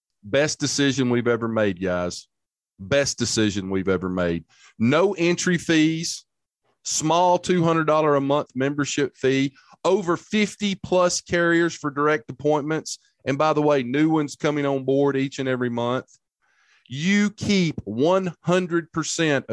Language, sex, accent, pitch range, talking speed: English, male, American, 120-165 Hz, 130 wpm